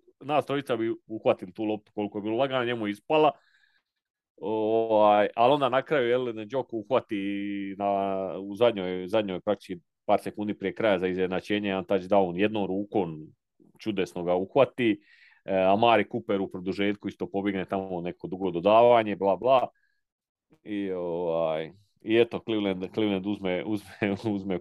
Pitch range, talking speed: 95-115 Hz, 140 wpm